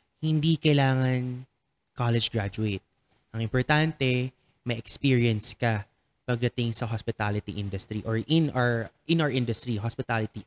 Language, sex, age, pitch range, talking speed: English, male, 20-39, 115-145 Hz, 115 wpm